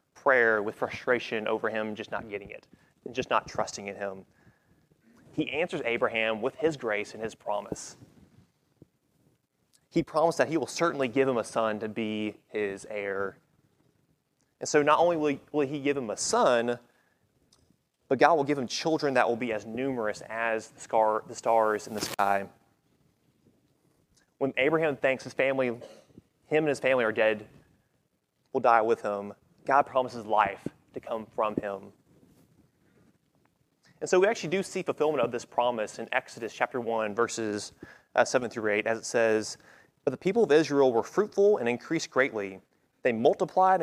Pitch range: 110-145 Hz